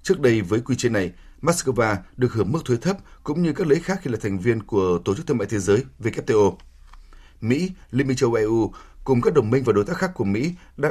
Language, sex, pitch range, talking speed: Vietnamese, male, 100-135 Hz, 250 wpm